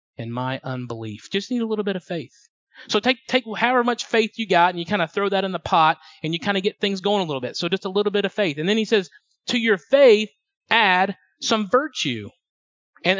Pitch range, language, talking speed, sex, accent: 170-225 Hz, English, 250 wpm, male, American